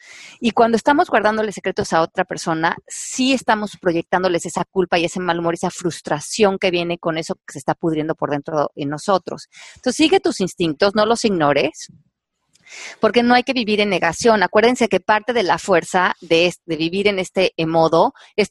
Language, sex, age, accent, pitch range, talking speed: Spanish, female, 30-49, Mexican, 165-215 Hz, 195 wpm